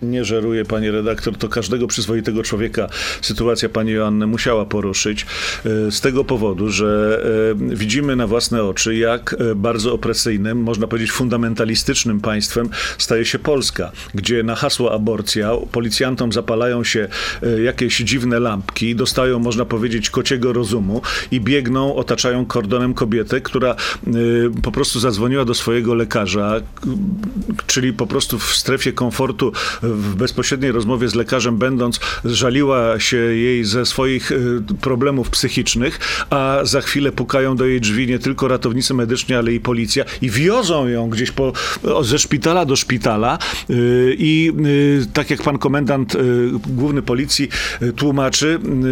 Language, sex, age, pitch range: Polish, male, 40-59, 115-135 Hz